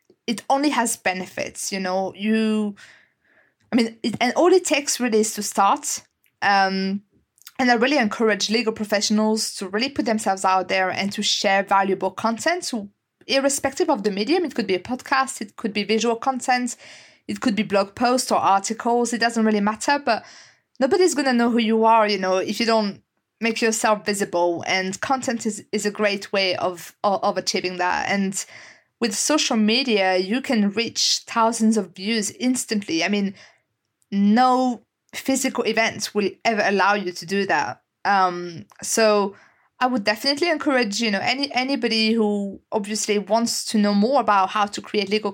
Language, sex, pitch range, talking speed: English, female, 200-245 Hz, 175 wpm